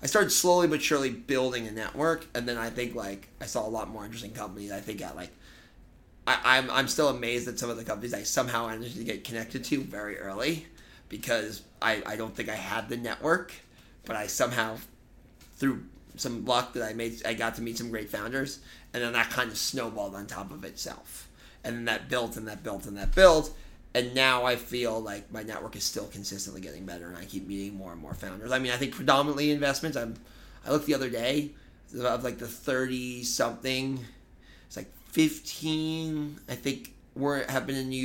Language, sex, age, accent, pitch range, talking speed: English, male, 30-49, American, 105-130 Hz, 210 wpm